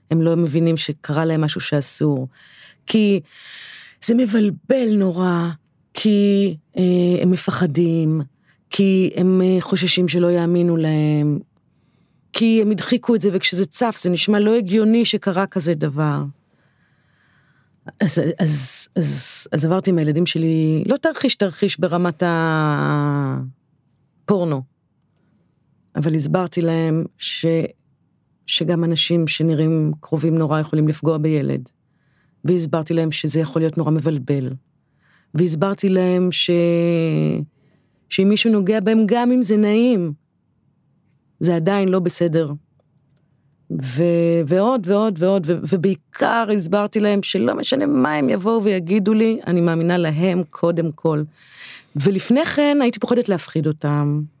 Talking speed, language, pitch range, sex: 120 wpm, Hebrew, 155-195 Hz, female